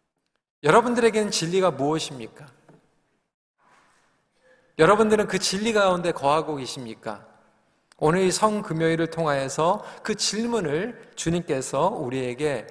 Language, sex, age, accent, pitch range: Korean, male, 40-59, native, 145-210 Hz